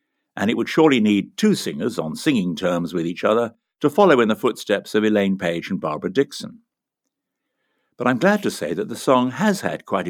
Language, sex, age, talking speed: English, male, 60-79, 210 wpm